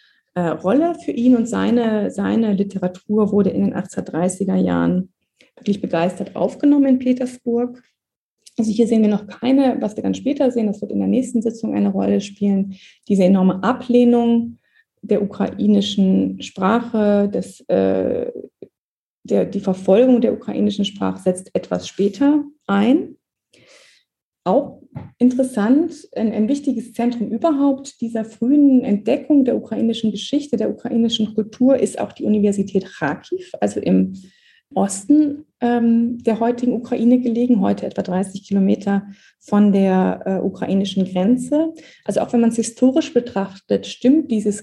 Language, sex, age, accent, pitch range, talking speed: German, female, 30-49, German, 195-250 Hz, 135 wpm